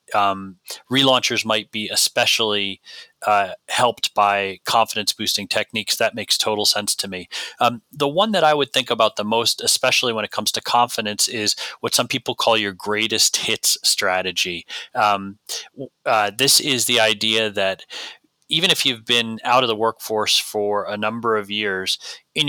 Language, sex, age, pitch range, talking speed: English, male, 30-49, 105-120 Hz, 170 wpm